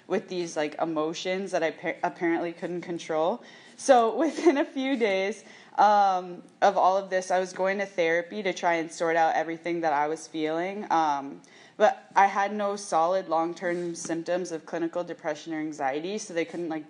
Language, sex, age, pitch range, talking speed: English, female, 20-39, 160-200 Hz, 185 wpm